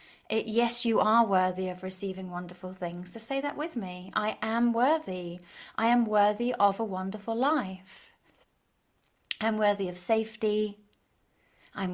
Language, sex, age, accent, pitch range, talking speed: English, female, 30-49, British, 190-225 Hz, 145 wpm